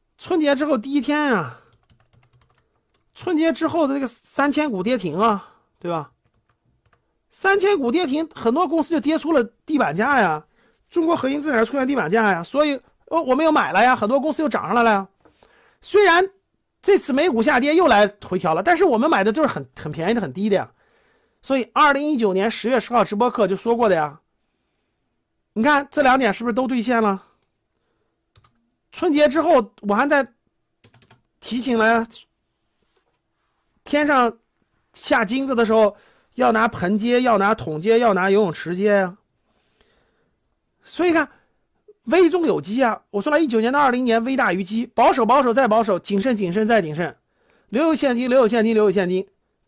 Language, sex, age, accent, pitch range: Chinese, male, 50-69, native, 205-295 Hz